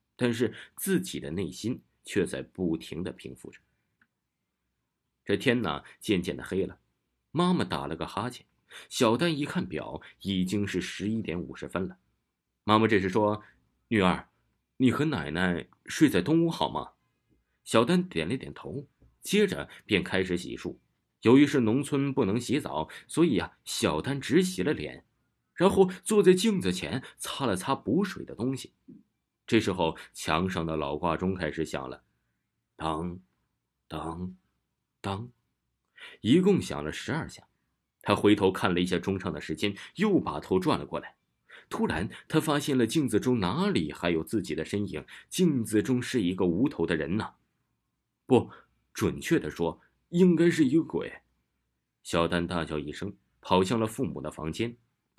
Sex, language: male, Chinese